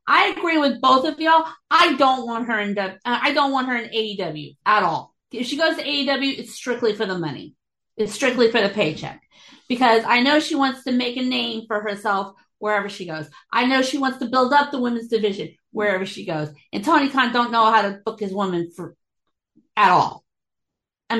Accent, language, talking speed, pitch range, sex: American, English, 215 wpm, 210-260 Hz, female